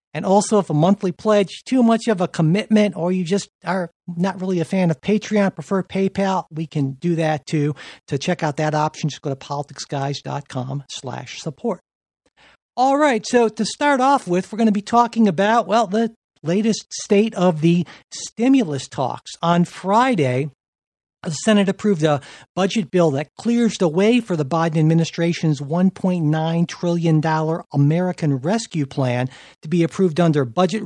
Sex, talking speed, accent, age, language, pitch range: male, 165 wpm, American, 50-69, English, 150-205 Hz